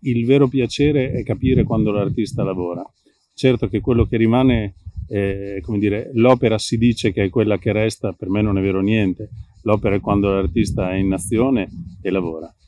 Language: Italian